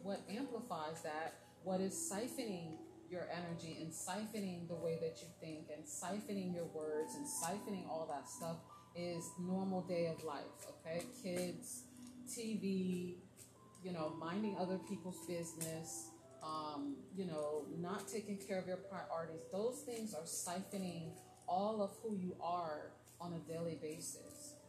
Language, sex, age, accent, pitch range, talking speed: English, female, 30-49, American, 165-210 Hz, 145 wpm